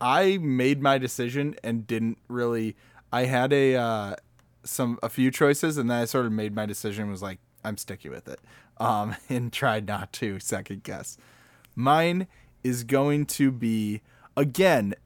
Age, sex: 20-39, male